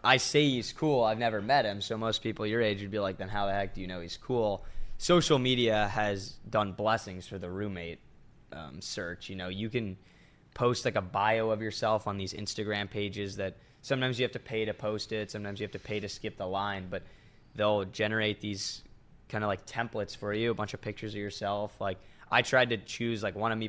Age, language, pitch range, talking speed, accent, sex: 10-29, English, 95-115 Hz, 235 wpm, American, male